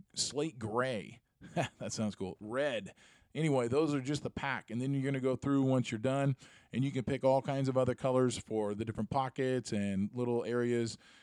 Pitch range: 110-145 Hz